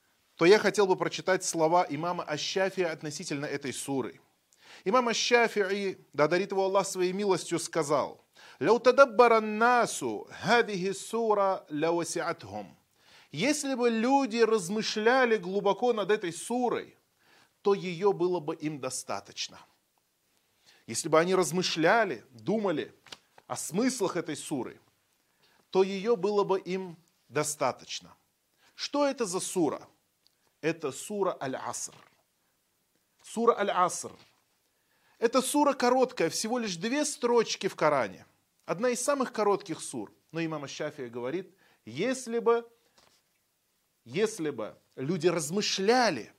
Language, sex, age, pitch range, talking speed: Russian, male, 30-49, 170-235 Hz, 110 wpm